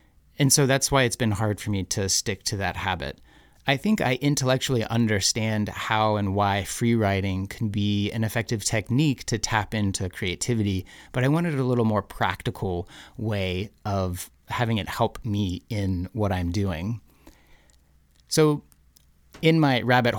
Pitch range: 95-125 Hz